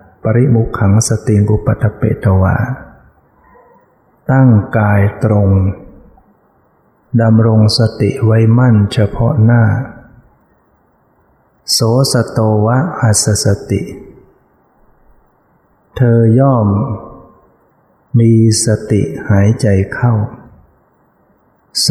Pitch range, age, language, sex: 105-120 Hz, 60-79, Thai, male